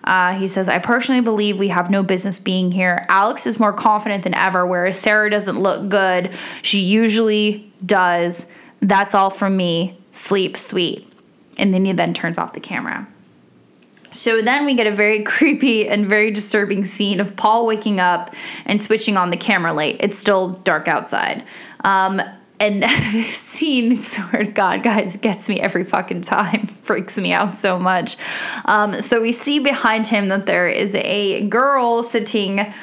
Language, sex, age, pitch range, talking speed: English, female, 10-29, 190-230 Hz, 175 wpm